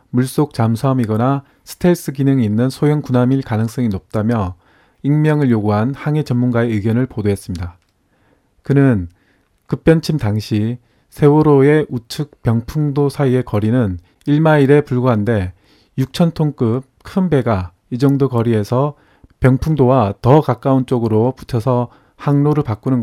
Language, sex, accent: Korean, male, native